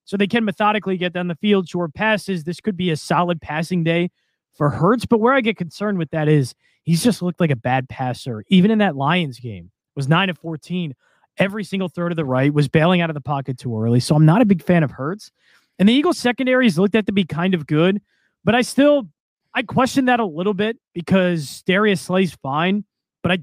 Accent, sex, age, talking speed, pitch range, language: American, male, 20-39, 235 wpm, 145-190 Hz, English